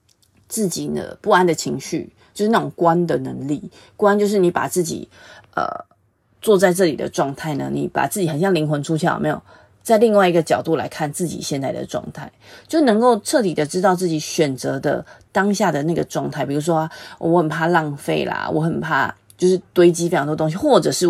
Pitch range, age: 150-185 Hz, 30-49